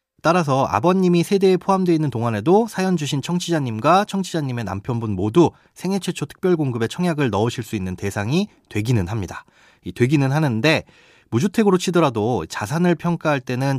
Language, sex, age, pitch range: Korean, male, 30-49, 115-175 Hz